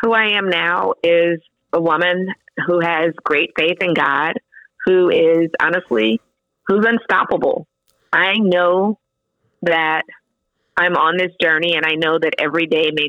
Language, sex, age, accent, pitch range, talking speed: English, female, 30-49, American, 155-180 Hz, 145 wpm